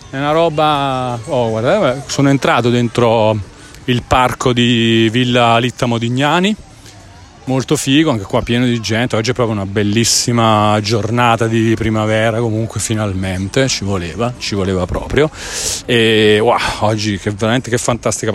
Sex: male